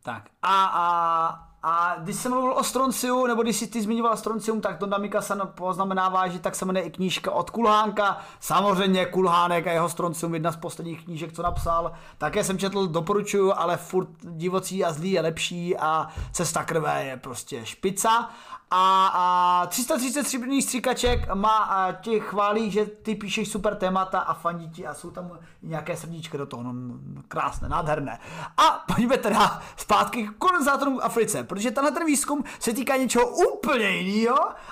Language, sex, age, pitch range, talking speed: Czech, male, 30-49, 175-240 Hz, 170 wpm